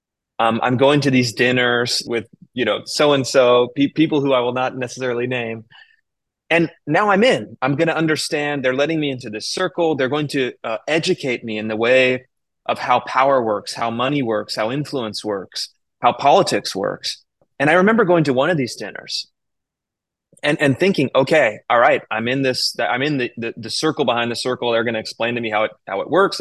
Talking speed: 210 wpm